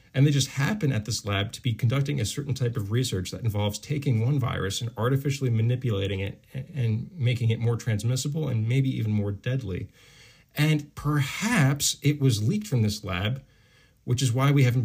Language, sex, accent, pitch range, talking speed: English, male, American, 105-130 Hz, 190 wpm